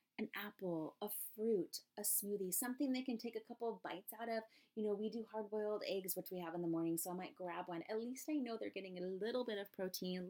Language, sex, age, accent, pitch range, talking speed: English, female, 30-49, American, 175-230 Hz, 260 wpm